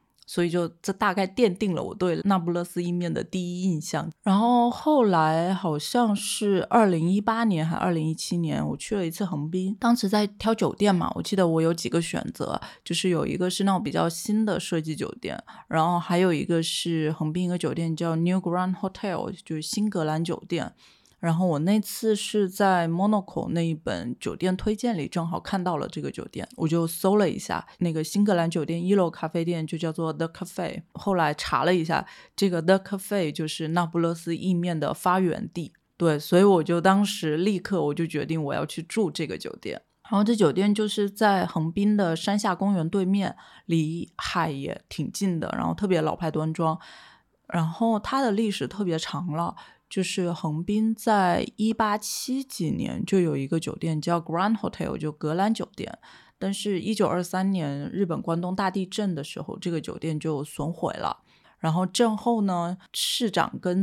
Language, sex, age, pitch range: Chinese, female, 20-39, 165-200 Hz